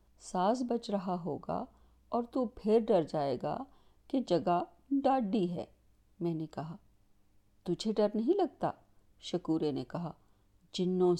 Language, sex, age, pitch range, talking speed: Urdu, female, 50-69, 155-225 Hz, 135 wpm